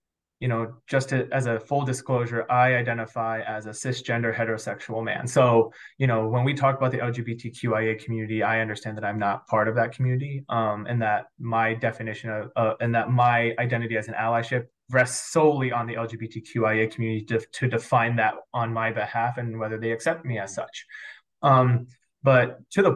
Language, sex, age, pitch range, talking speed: English, male, 20-39, 110-125 Hz, 185 wpm